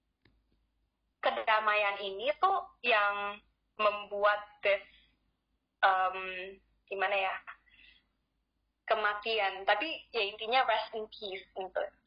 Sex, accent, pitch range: female, native, 195-240 Hz